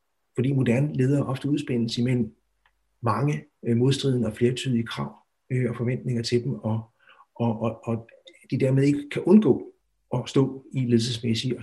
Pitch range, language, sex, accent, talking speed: 115-150 Hz, Danish, male, native, 150 wpm